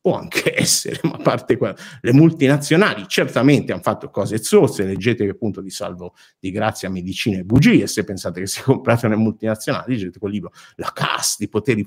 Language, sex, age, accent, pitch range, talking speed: Italian, male, 50-69, native, 105-145 Hz, 180 wpm